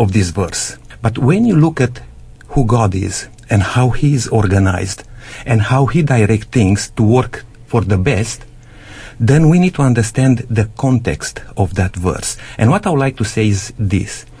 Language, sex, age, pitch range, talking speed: English, male, 50-69, 105-135 Hz, 185 wpm